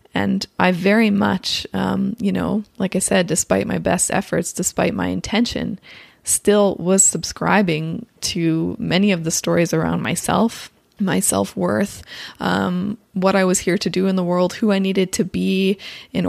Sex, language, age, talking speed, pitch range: female, English, 20-39, 160 wpm, 170-200 Hz